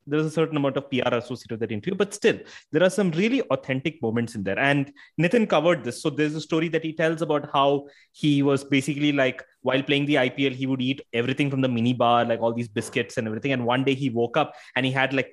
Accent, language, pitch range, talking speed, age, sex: Indian, English, 130-170 Hz, 255 wpm, 20-39, male